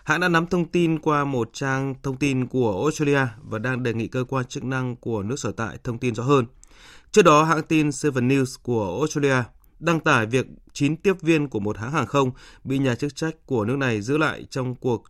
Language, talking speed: Vietnamese, 230 wpm